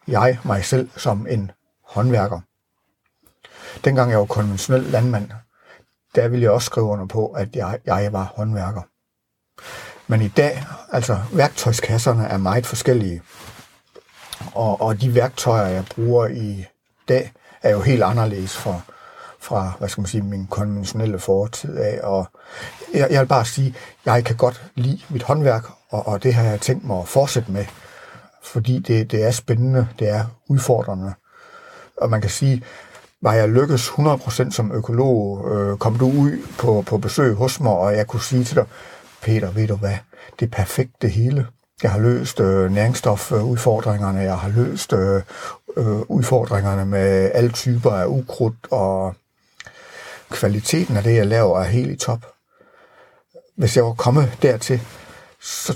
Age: 60-79